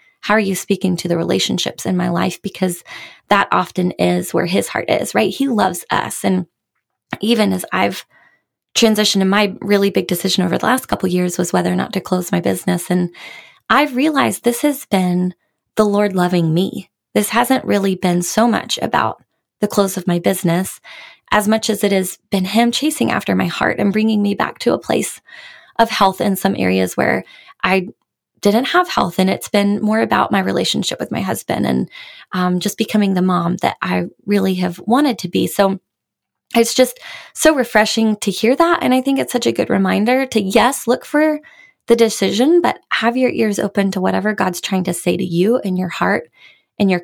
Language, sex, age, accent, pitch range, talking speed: English, female, 20-39, American, 180-230 Hz, 205 wpm